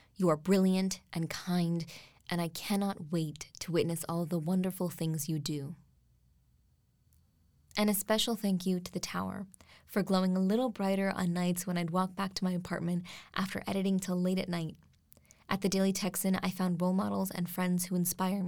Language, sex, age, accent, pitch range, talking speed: English, female, 20-39, American, 175-195 Hz, 185 wpm